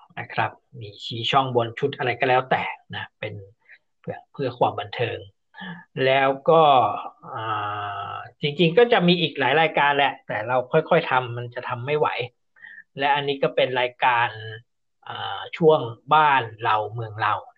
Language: Thai